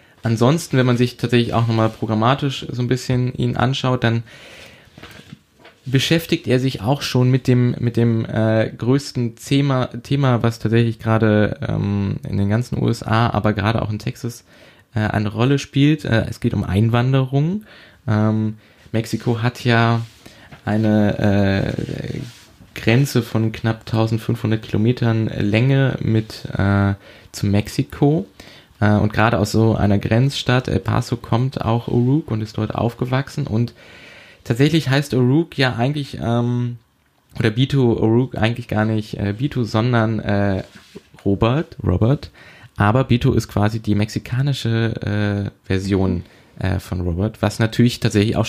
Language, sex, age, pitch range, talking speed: German, male, 20-39, 105-125 Hz, 140 wpm